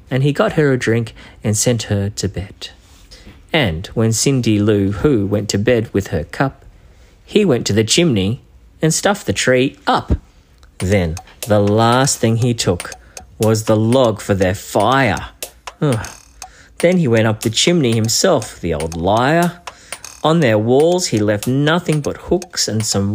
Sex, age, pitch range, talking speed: male, 40-59, 105-160 Hz, 165 wpm